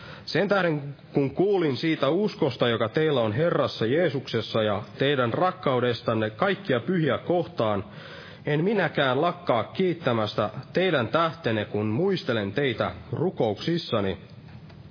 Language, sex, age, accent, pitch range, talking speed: Finnish, male, 30-49, native, 115-175 Hz, 110 wpm